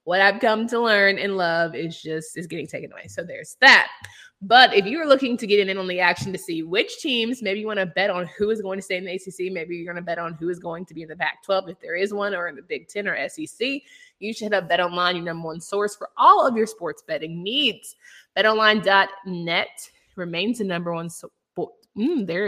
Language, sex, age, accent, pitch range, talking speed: English, female, 20-39, American, 170-220 Hz, 255 wpm